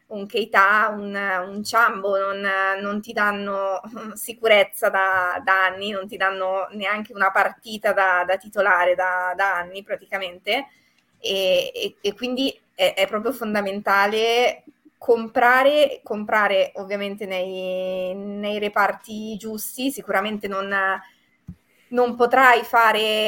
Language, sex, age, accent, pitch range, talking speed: Italian, female, 20-39, native, 195-220 Hz, 120 wpm